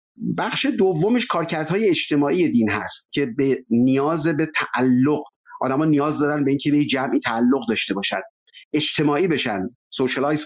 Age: 50-69